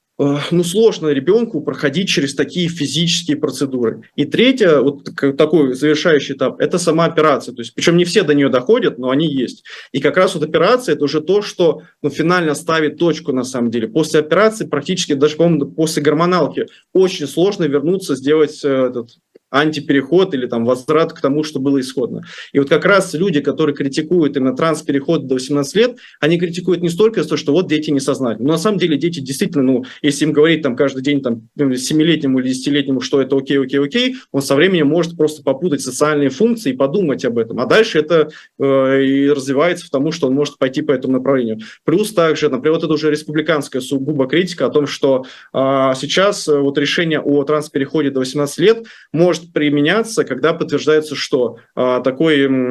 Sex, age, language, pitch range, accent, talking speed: male, 20-39, Russian, 140-165 Hz, native, 185 wpm